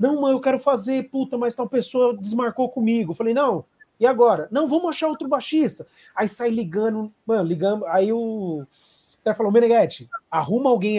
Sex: male